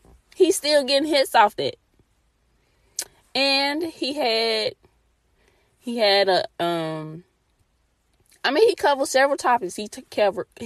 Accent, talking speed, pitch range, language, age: American, 125 wpm, 185-240 Hz, English, 20-39